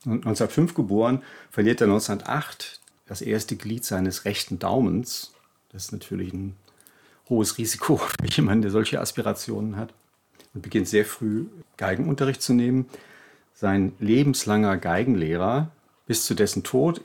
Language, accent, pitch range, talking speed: German, German, 95-125 Hz, 130 wpm